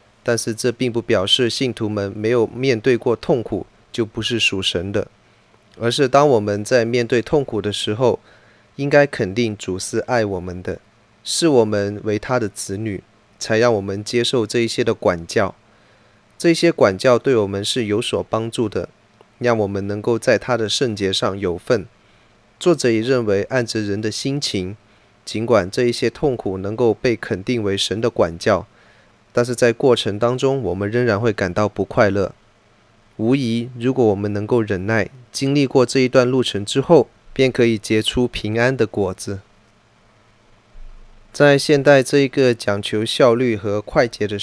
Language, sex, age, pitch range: Chinese, male, 20-39, 100-125 Hz